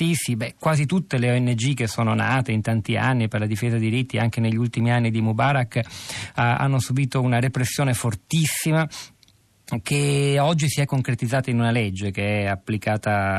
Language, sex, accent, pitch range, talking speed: Italian, male, native, 115-135 Hz, 170 wpm